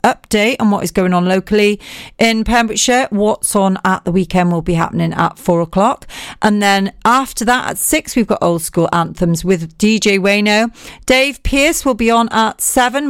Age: 40-59